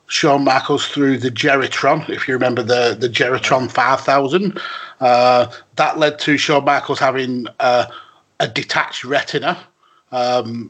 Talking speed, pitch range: 135 wpm, 125-150 Hz